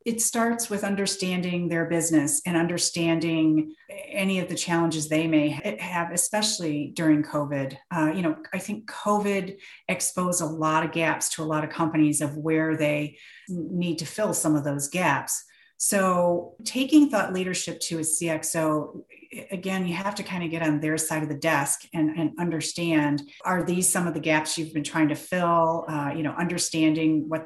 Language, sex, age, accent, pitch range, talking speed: English, female, 40-59, American, 155-195 Hz, 180 wpm